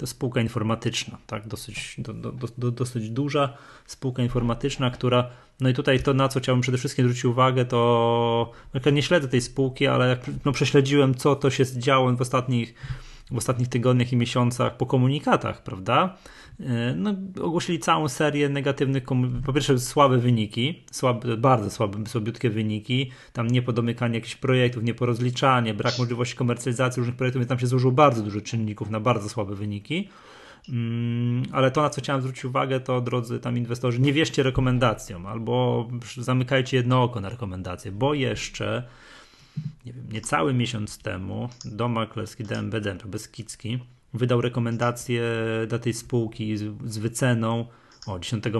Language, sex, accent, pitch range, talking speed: Polish, male, native, 115-135 Hz, 145 wpm